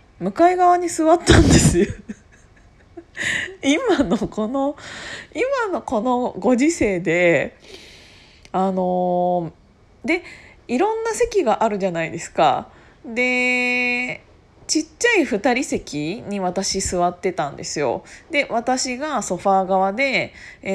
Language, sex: Japanese, female